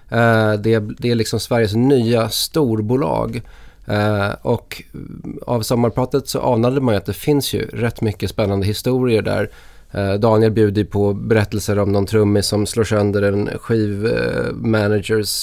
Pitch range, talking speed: 105-120 Hz, 150 wpm